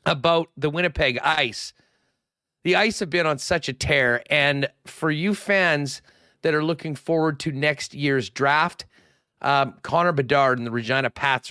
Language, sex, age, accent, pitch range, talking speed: English, male, 40-59, American, 135-180 Hz, 160 wpm